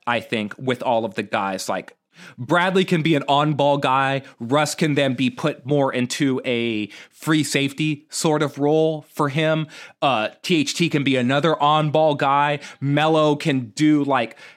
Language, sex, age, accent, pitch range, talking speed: English, male, 30-49, American, 130-155 Hz, 175 wpm